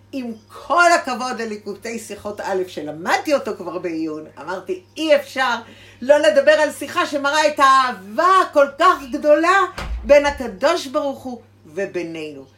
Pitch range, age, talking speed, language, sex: 190-275 Hz, 50-69, 135 wpm, English, female